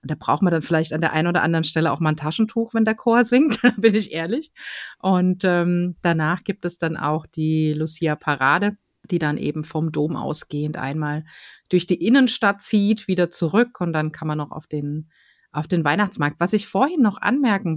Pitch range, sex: 160-210 Hz, female